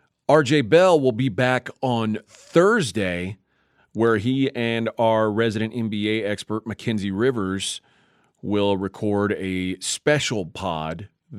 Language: English